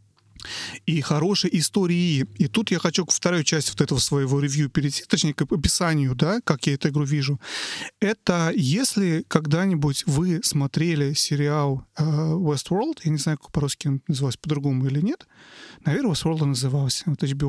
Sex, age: male, 30-49